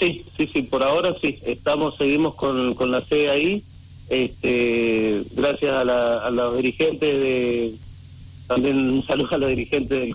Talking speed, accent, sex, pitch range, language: 165 wpm, Argentinian, male, 115-145 Hz, Spanish